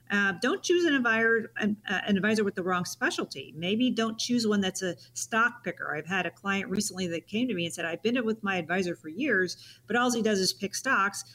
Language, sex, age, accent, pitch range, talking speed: English, female, 40-59, American, 165-210 Hz, 240 wpm